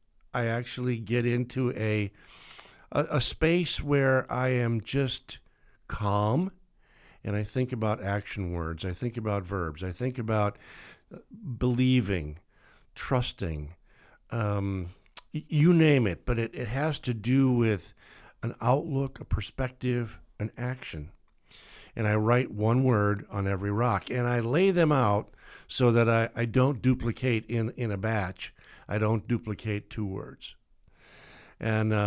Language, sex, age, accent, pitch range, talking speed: English, male, 50-69, American, 100-125 Hz, 140 wpm